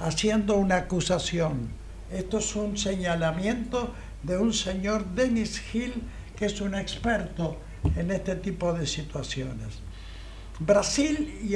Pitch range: 175-225 Hz